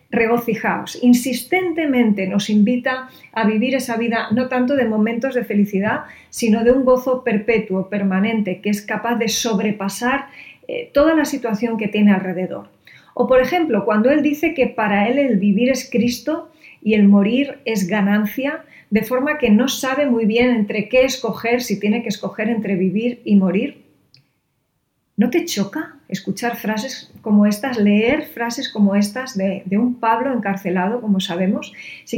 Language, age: English, 40-59